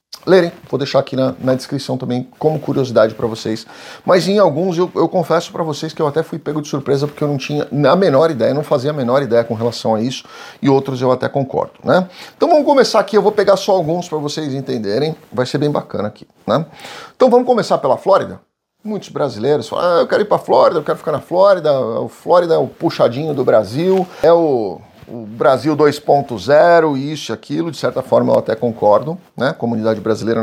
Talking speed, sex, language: 220 wpm, male, Portuguese